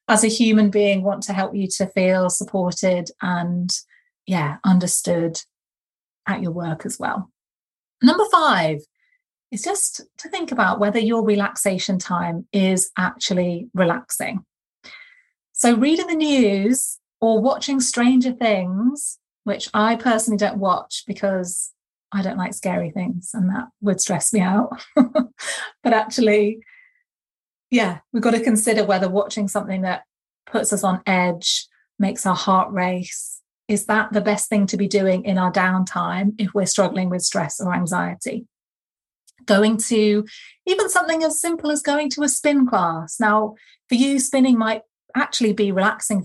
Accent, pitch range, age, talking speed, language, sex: British, 190-245 Hz, 30-49, 150 wpm, English, female